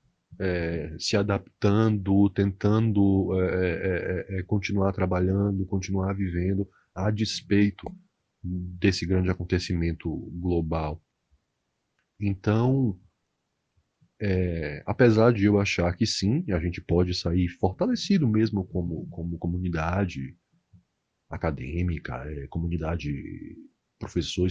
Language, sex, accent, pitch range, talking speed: Portuguese, male, Brazilian, 90-110 Hz, 95 wpm